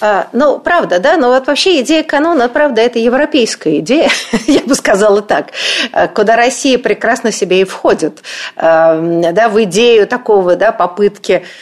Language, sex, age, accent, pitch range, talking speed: Russian, female, 50-69, native, 195-260 Hz, 150 wpm